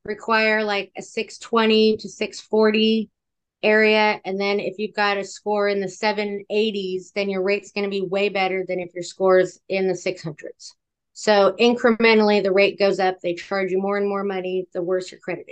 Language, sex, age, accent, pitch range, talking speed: English, female, 30-49, American, 185-215 Hz, 195 wpm